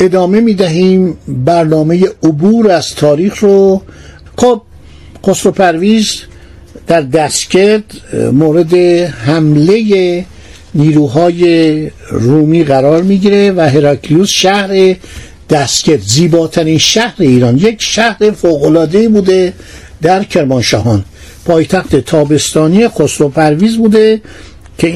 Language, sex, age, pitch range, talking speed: Persian, male, 60-79, 155-215 Hz, 85 wpm